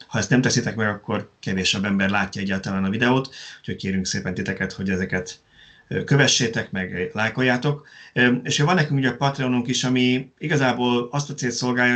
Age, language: 30-49, Hungarian